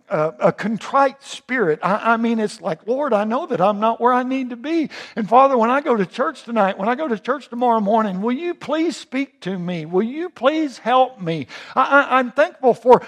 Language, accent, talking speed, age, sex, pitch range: English, American, 235 wpm, 60-79, male, 190-260 Hz